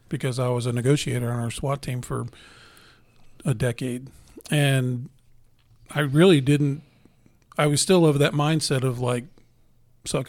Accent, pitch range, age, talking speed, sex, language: American, 125-155 Hz, 40-59, 145 wpm, male, English